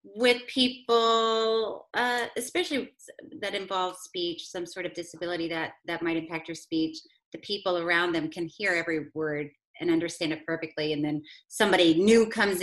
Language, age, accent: English, 30-49, American